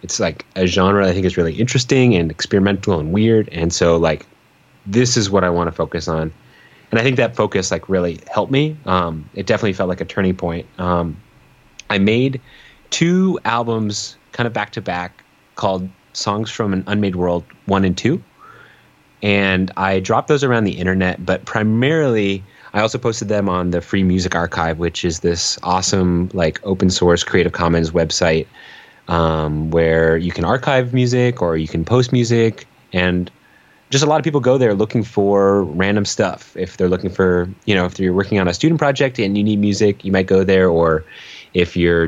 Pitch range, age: 90-115 Hz, 30-49